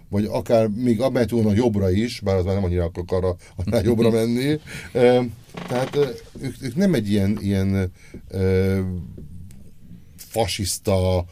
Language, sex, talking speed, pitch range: Hungarian, male, 150 wpm, 90-115 Hz